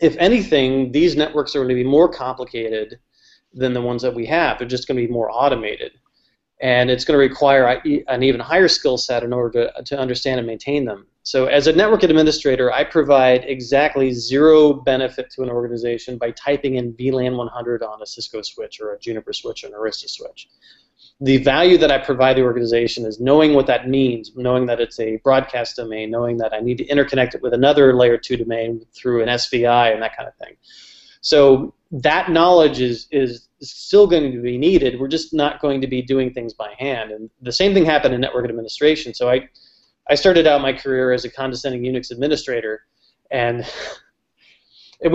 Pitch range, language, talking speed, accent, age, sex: 120-145 Hz, English, 200 wpm, American, 30-49, male